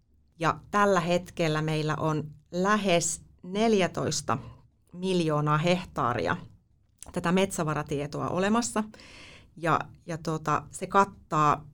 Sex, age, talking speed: female, 30-49, 80 wpm